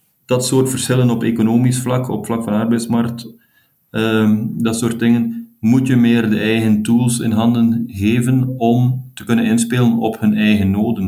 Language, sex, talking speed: Dutch, male, 170 wpm